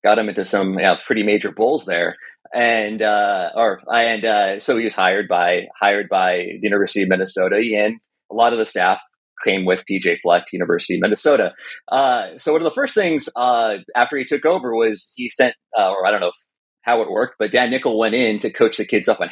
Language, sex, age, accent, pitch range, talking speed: English, male, 30-49, American, 105-145 Hz, 230 wpm